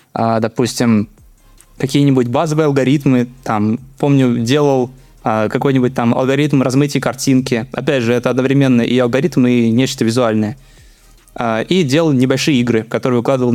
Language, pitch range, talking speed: Russian, 120-150 Hz, 135 wpm